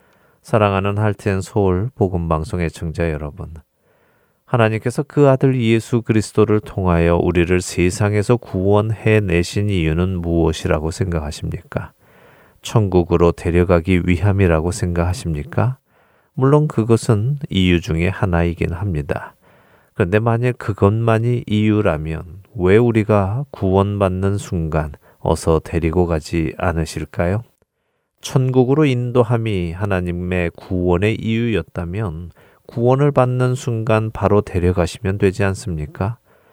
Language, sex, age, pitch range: Korean, male, 40-59, 85-115 Hz